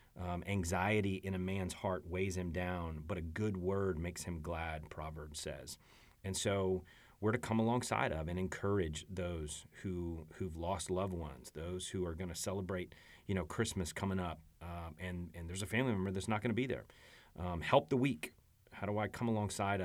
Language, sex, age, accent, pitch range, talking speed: English, male, 30-49, American, 85-105 Hz, 200 wpm